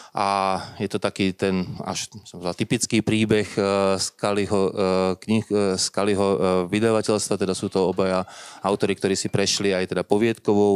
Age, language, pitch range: 30-49, Slovak, 90-105 Hz